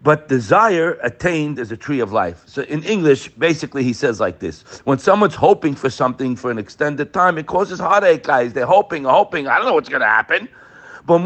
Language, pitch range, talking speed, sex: English, 130-190 Hz, 210 wpm, male